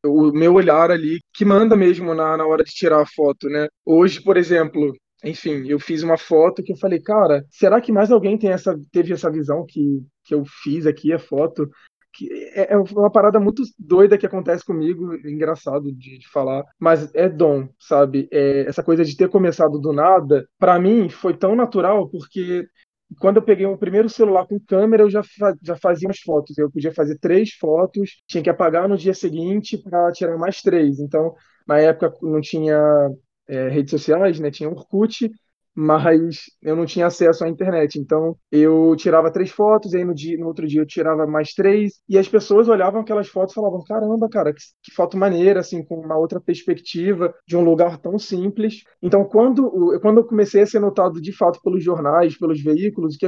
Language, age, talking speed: Portuguese, 20-39, 195 wpm